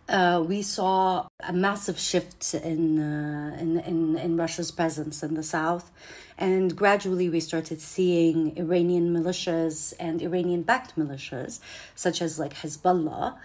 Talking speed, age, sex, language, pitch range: 135 wpm, 40-59, female, English, 160-180 Hz